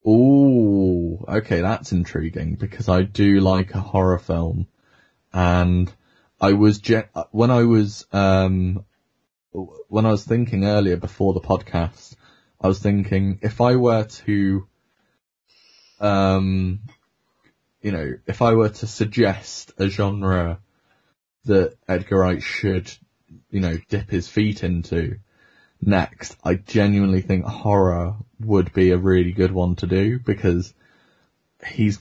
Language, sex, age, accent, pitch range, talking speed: English, male, 20-39, British, 90-110 Hz, 130 wpm